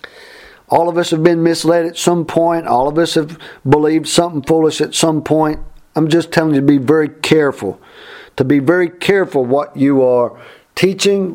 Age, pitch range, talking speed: 50-69, 135-175 Hz, 185 wpm